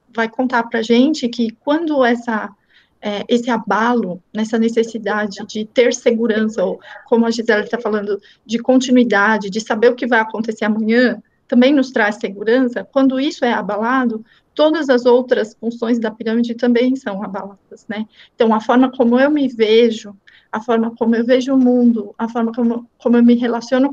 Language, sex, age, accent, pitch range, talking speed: Portuguese, female, 40-59, Brazilian, 225-255 Hz, 175 wpm